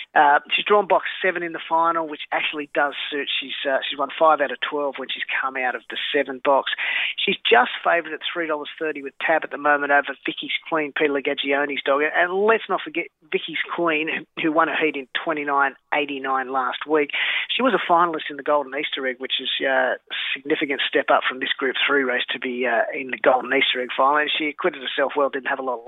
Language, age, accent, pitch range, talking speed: English, 30-49, Australian, 140-165 Hz, 230 wpm